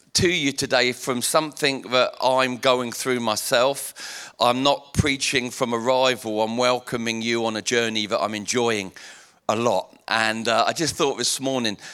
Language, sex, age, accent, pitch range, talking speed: English, male, 40-59, British, 120-155 Hz, 165 wpm